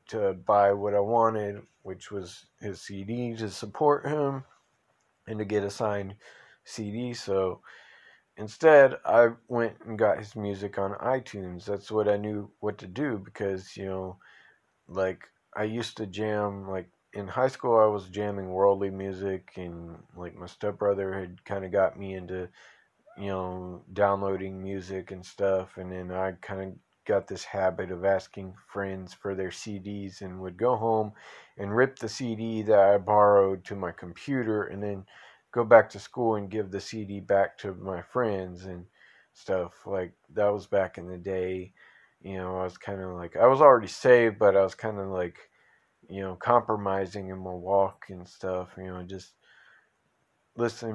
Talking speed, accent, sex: 175 wpm, American, male